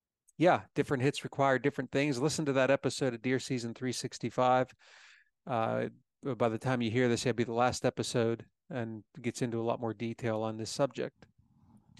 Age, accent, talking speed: 40-59, American, 180 wpm